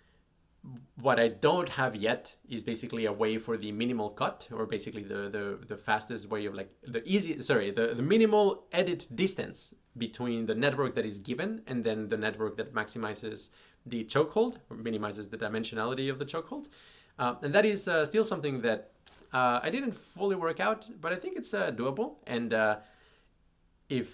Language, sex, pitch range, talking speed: English, male, 105-145 Hz, 180 wpm